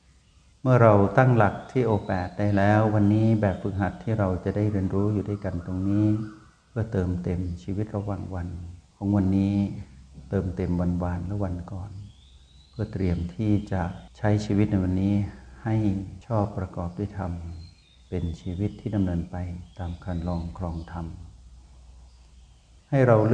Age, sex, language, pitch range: 60-79, male, Thai, 90-105 Hz